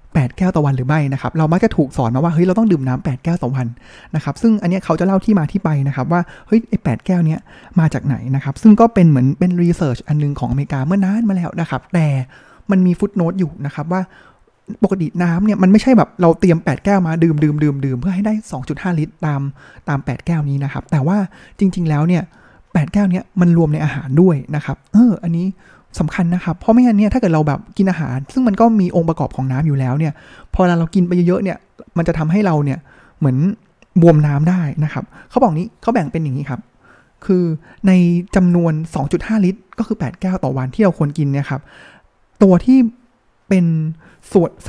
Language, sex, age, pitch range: Thai, male, 20-39, 145-185 Hz